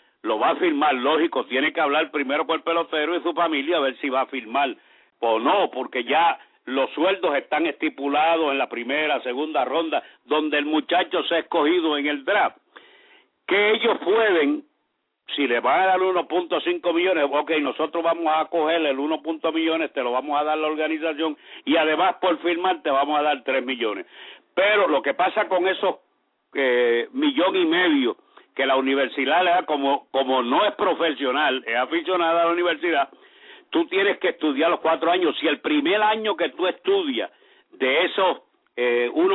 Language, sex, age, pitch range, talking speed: English, male, 60-79, 150-215 Hz, 180 wpm